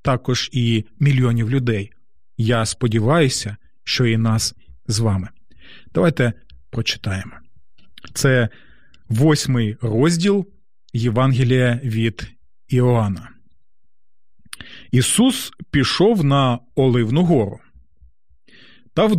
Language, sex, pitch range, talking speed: Ukrainian, male, 110-170 Hz, 80 wpm